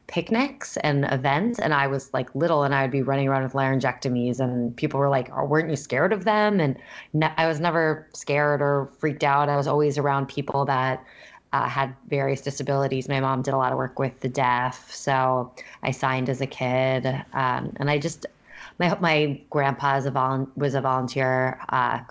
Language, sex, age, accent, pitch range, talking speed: English, female, 20-39, American, 130-150 Hz, 205 wpm